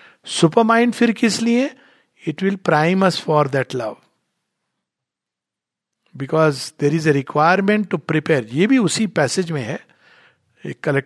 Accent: native